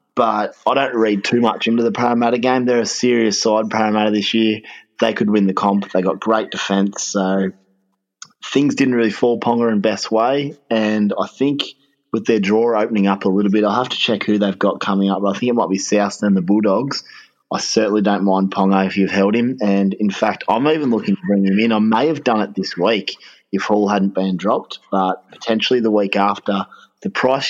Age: 20-39